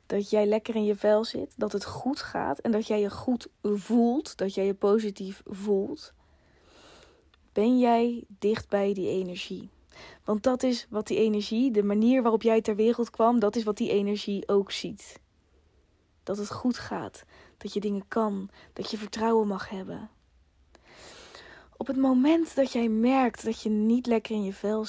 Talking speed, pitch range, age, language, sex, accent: 180 wpm, 200-240 Hz, 20-39, Dutch, female, Dutch